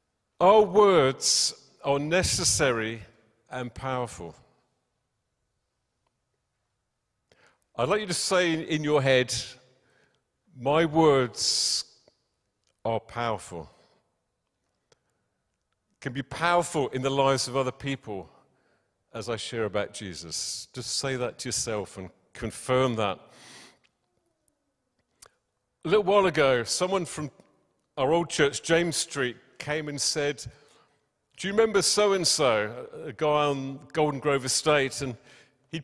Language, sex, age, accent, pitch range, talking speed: English, male, 50-69, British, 125-175 Hz, 110 wpm